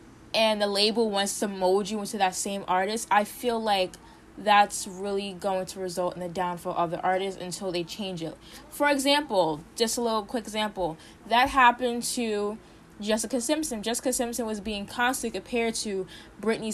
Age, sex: 10-29, female